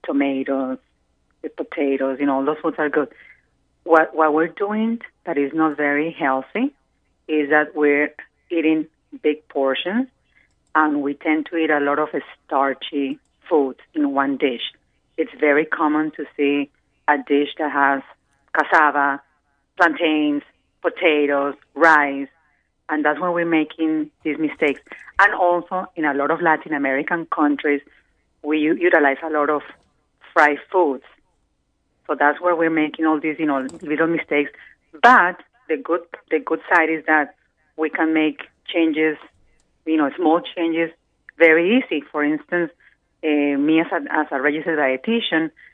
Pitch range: 145-160 Hz